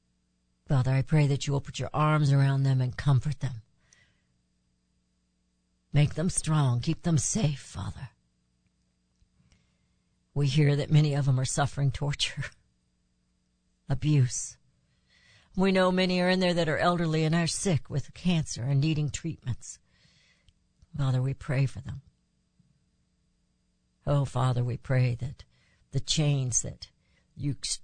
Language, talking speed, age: English, 135 wpm, 60-79